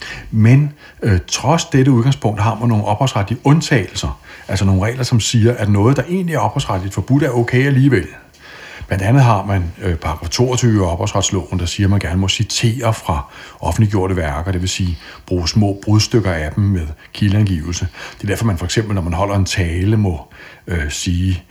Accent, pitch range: native, 90-110 Hz